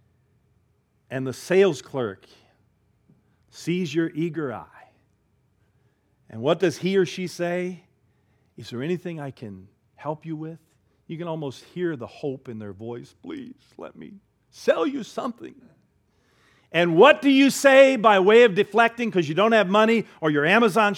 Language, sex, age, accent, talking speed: English, male, 50-69, American, 155 wpm